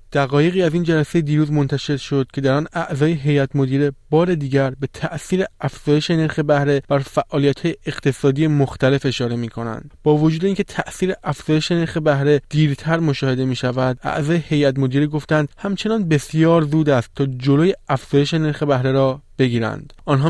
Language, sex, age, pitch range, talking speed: Persian, male, 20-39, 140-170 Hz, 160 wpm